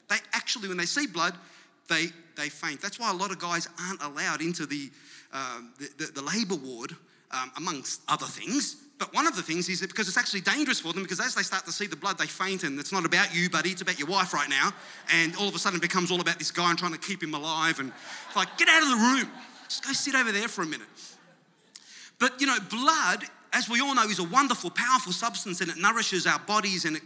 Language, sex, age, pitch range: English, male, 30-49, 170-220 Hz